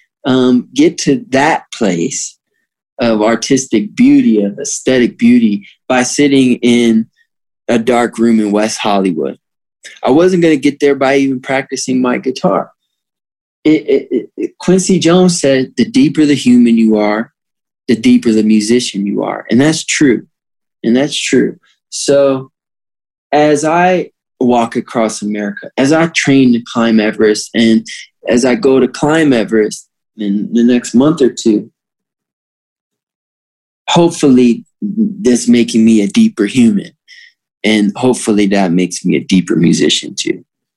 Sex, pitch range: male, 110-145 Hz